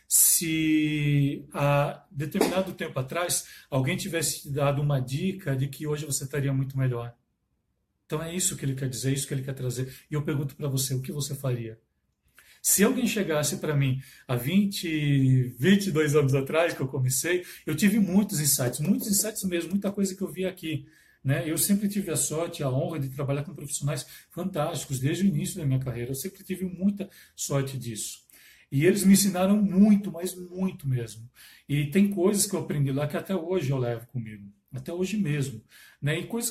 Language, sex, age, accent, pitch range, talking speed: Portuguese, male, 40-59, Brazilian, 135-185 Hz, 190 wpm